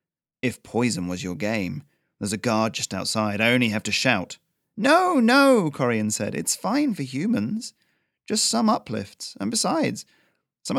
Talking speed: 160 wpm